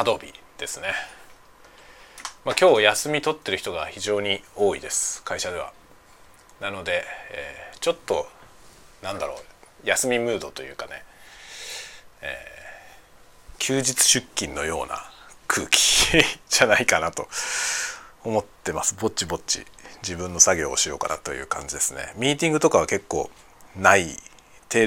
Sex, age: male, 40-59